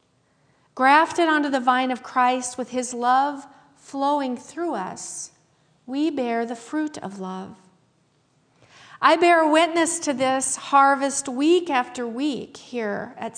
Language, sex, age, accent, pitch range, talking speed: English, female, 40-59, American, 230-285 Hz, 130 wpm